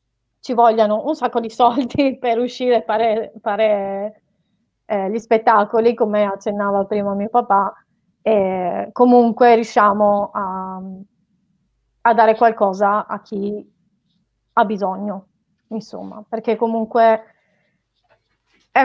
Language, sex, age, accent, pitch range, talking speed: Italian, female, 30-49, native, 205-235 Hz, 105 wpm